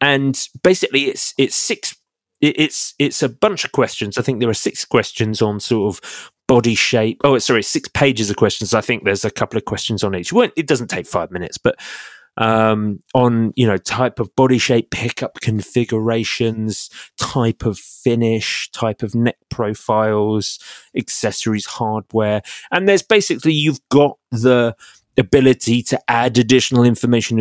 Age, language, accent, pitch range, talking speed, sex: 30-49, English, British, 110-135 Hz, 160 wpm, male